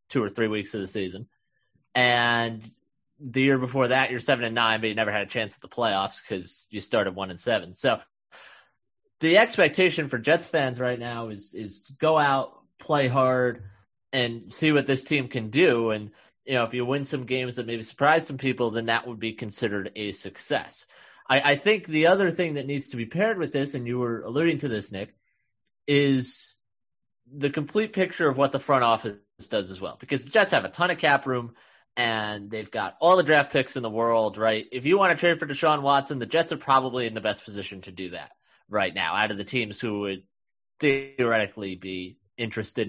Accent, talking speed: American, 215 wpm